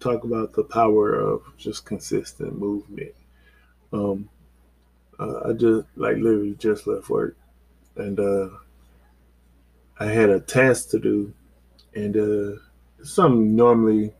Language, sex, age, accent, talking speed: English, male, 20-39, American, 125 wpm